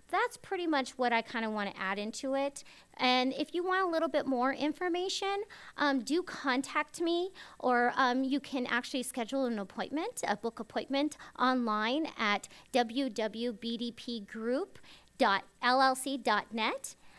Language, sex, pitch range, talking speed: English, female, 220-290 Hz, 135 wpm